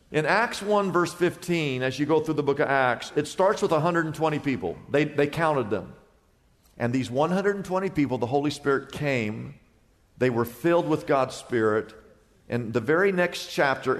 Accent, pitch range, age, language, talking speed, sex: American, 135-200 Hz, 50-69, English, 175 wpm, male